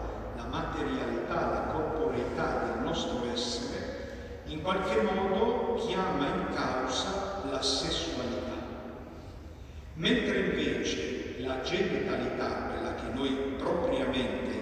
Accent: native